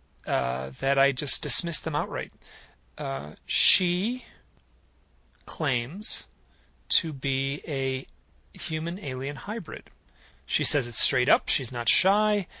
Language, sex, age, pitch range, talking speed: English, male, 40-59, 135-175 Hz, 115 wpm